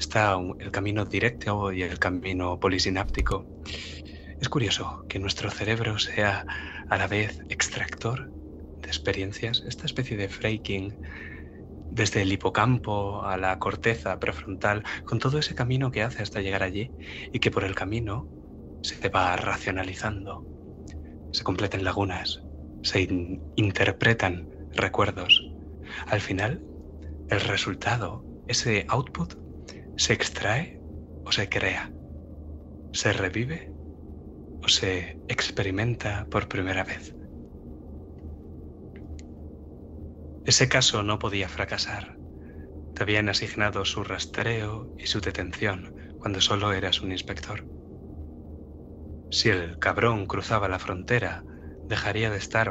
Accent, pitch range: Spanish, 75-105 Hz